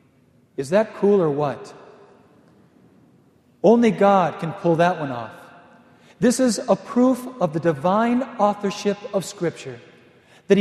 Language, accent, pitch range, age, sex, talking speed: English, American, 170-225 Hz, 40-59, male, 130 wpm